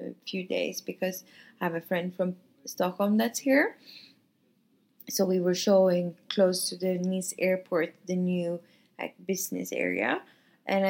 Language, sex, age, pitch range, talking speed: English, female, 20-39, 170-205 Hz, 145 wpm